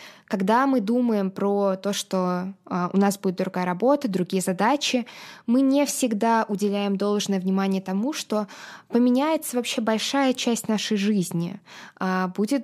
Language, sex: Russian, female